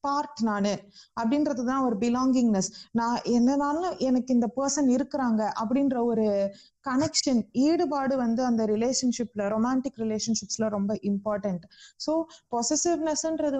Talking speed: 105 wpm